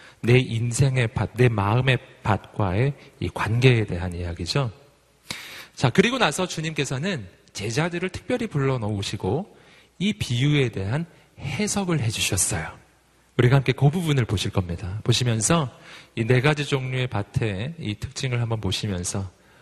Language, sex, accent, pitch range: Korean, male, native, 105-150 Hz